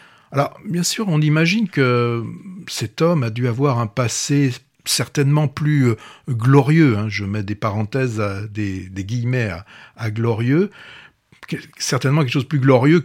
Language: French